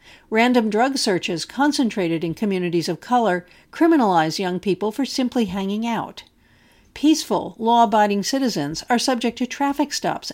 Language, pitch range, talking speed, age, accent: English, 185-250 Hz, 135 wpm, 50-69, American